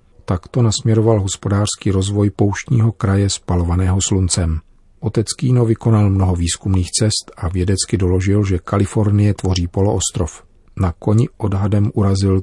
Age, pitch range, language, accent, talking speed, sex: 40-59, 90-105 Hz, Czech, native, 120 wpm, male